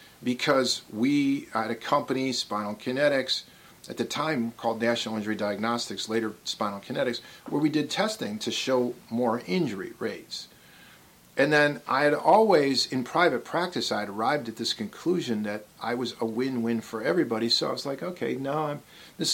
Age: 40-59